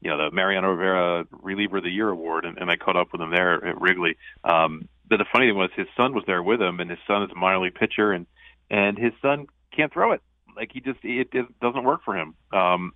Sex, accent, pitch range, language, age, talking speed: male, American, 90-115 Hz, English, 40-59, 265 wpm